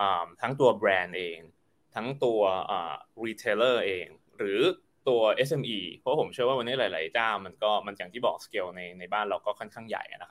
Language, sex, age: Thai, male, 20-39